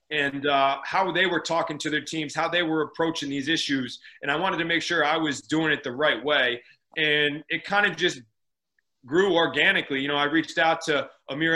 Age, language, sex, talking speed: 30-49, English, male, 220 wpm